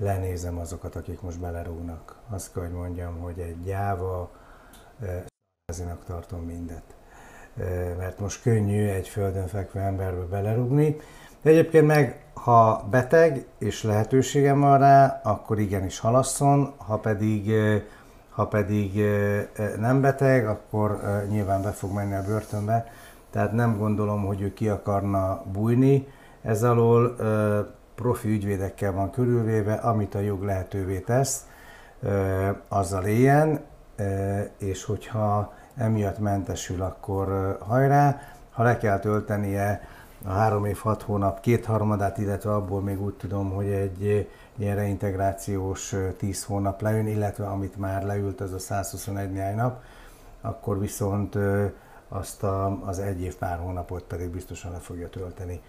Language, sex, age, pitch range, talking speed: Hungarian, male, 60-79, 95-115 Hz, 135 wpm